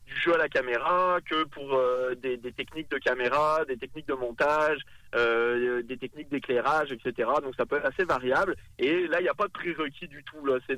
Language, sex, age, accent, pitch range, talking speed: French, male, 30-49, French, 130-170 Hz, 225 wpm